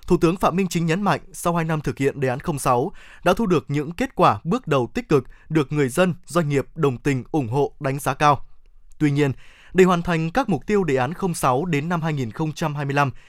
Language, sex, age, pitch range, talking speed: Vietnamese, male, 20-39, 140-180 Hz, 230 wpm